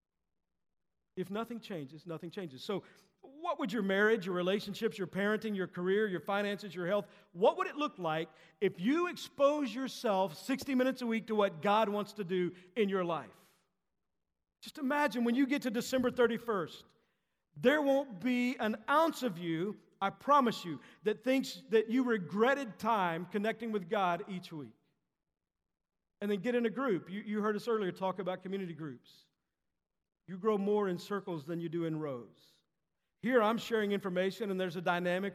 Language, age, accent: English, 50-69, American